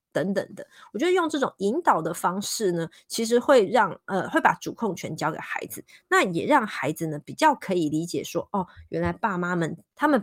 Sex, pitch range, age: female, 175-245 Hz, 30-49